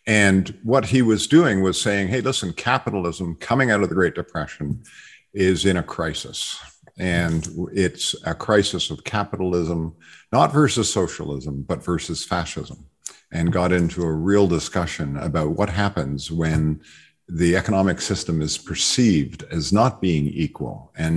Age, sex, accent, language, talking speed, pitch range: 50-69, male, American, English, 145 wpm, 85-105 Hz